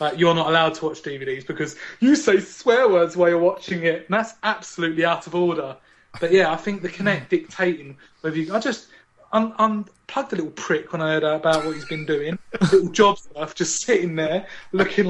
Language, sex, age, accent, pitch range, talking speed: English, male, 30-49, British, 160-205 Hz, 205 wpm